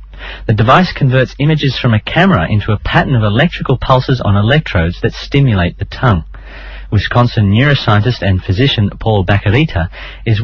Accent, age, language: Australian, 40-59, English